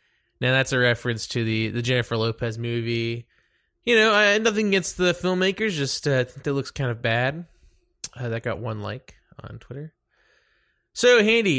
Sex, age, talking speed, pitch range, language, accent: male, 20-39, 170 wpm, 115-170 Hz, English, American